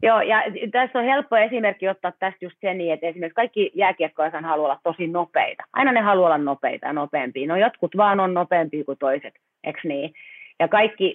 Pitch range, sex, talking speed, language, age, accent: 165-215 Hz, female, 195 wpm, Finnish, 30-49, native